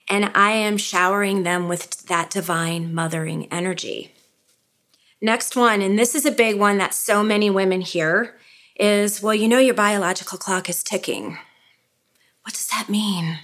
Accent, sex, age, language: American, female, 30-49, English